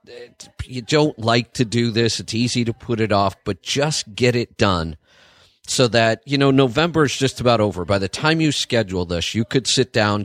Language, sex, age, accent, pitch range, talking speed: English, male, 40-59, American, 105-135 Hz, 210 wpm